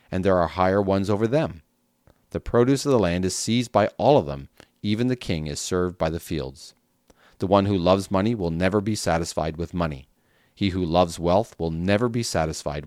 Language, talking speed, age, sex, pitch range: English, 210 wpm, 40-59, male, 85-110 Hz